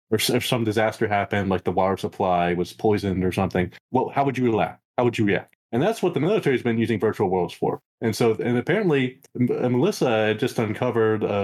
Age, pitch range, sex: 20-39, 105-125 Hz, male